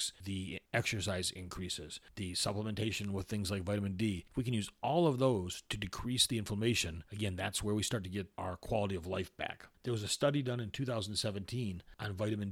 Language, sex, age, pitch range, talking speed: English, male, 40-59, 95-115 Hz, 200 wpm